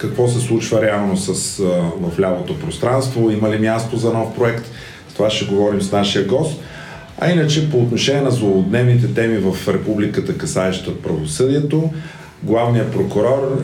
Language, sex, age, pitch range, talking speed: Bulgarian, male, 40-59, 100-130 Hz, 150 wpm